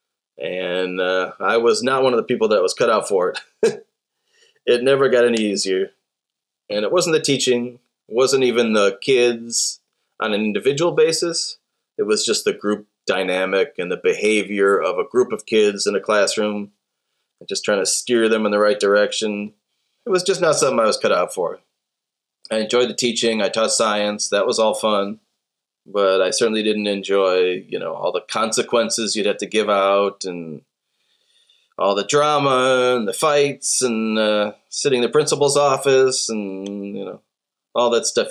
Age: 30-49